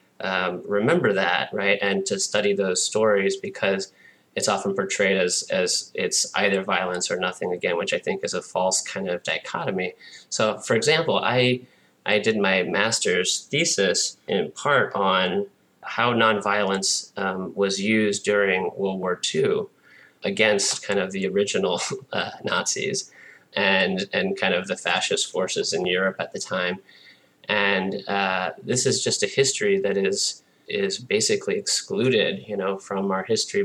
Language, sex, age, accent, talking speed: English, male, 20-39, American, 155 wpm